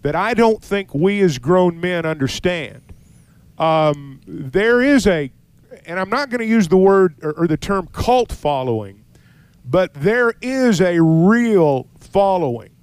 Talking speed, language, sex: 155 wpm, English, male